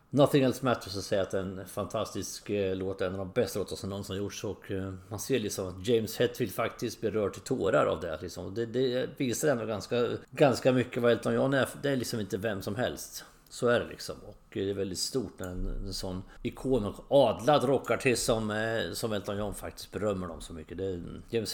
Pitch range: 95-125 Hz